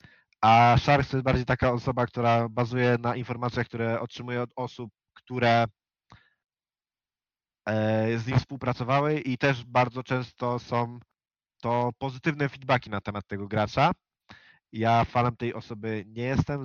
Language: Polish